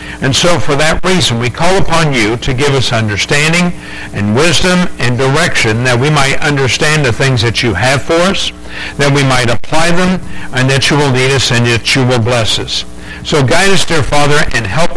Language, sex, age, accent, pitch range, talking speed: English, male, 60-79, American, 125-160 Hz, 210 wpm